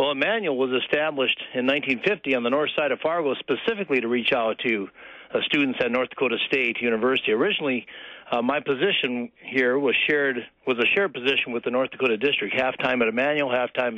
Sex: male